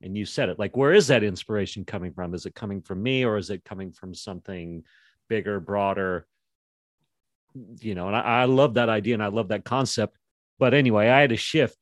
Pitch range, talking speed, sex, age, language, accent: 95-115 Hz, 220 wpm, male, 40-59, English, American